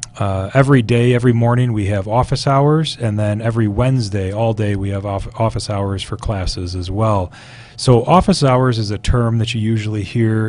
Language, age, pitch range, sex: English, 30-49, 105-125 Hz, male